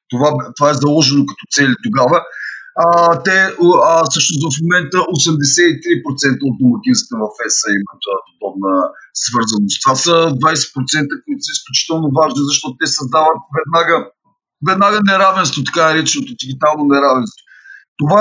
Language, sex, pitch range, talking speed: Bulgarian, male, 145-185 Hz, 130 wpm